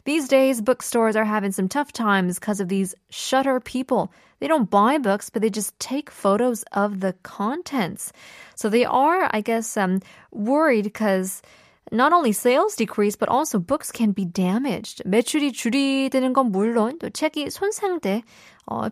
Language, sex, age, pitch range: Korean, female, 20-39, 195-265 Hz